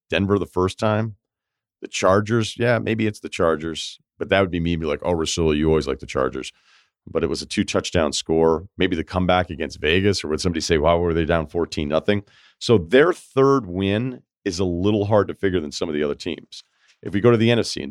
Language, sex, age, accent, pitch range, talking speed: English, male, 40-59, American, 80-100 Hz, 235 wpm